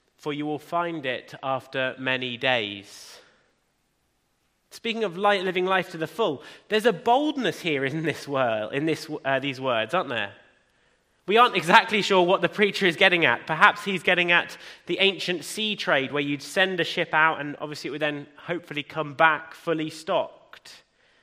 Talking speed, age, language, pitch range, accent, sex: 180 wpm, 30-49, English, 145-210 Hz, British, male